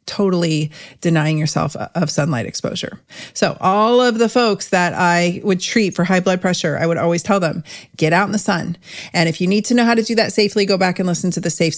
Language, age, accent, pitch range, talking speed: English, 40-59, American, 160-200 Hz, 240 wpm